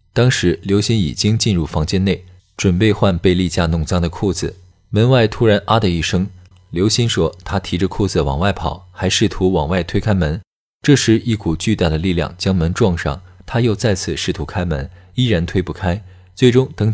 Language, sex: Chinese, male